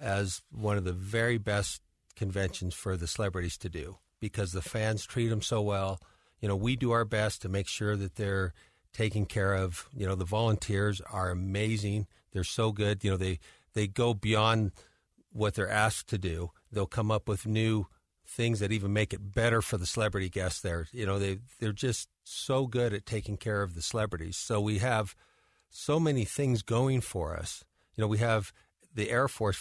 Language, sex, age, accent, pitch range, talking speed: English, male, 40-59, American, 95-115 Hz, 200 wpm